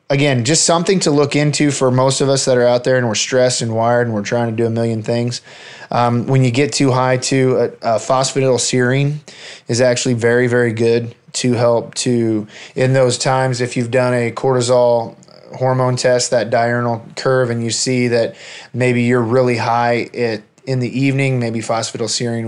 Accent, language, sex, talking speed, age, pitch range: American, English, male, 190 wpm, 20-39, 115-130 Hz